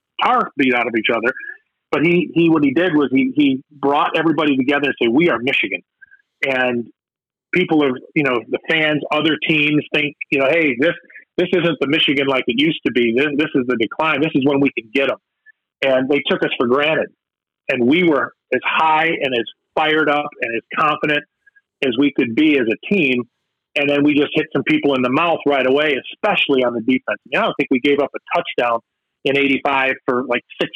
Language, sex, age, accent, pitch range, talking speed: English, male, 40-59, American, 135-160 Hz, 220 wpm